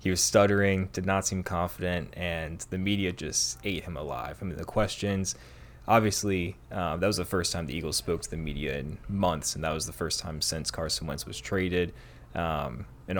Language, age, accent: English, 20-39, American